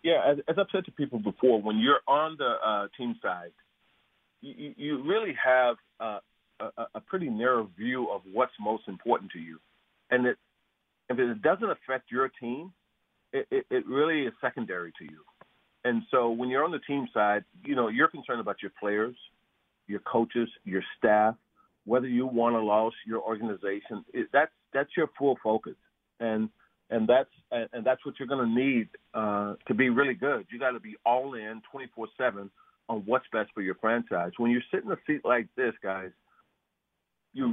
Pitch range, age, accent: 110-145 Hz, 40-59, American